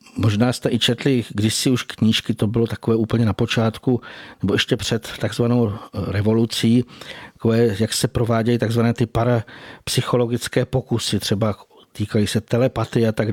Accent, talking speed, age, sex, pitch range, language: native, 145 wpm, 50-69, male, 115-135 Hz, Czech